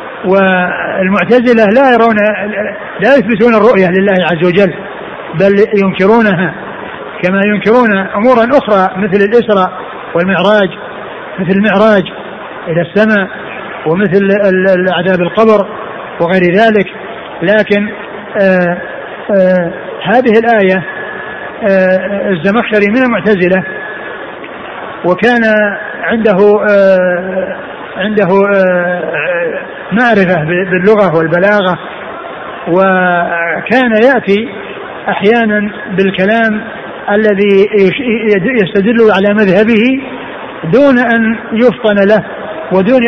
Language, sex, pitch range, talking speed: Arabic, male, 190-220 Hz, 75 wpm